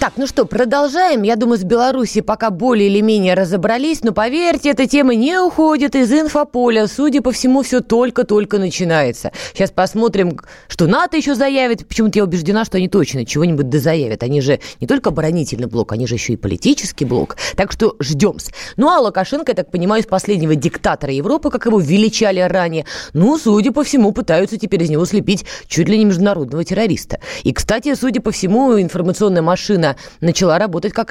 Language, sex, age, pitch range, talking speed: Russian, female, 20-39, 165-245 Hz, 180 wpm